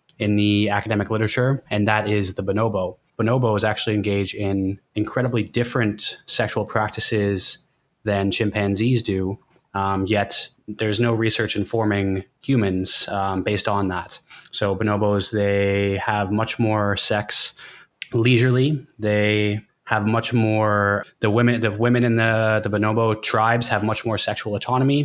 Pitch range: 100-115 Hz